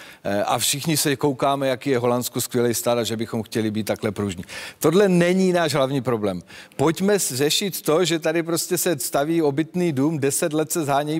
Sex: male